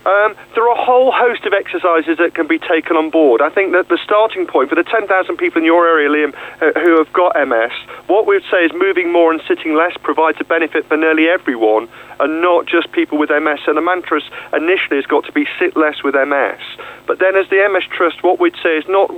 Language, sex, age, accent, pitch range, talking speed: English, male, 40-59, British, 165-225 Hz, 240 wpm